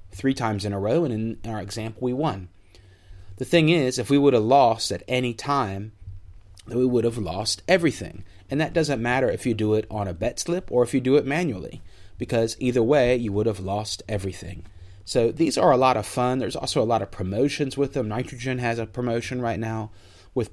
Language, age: English, 30-49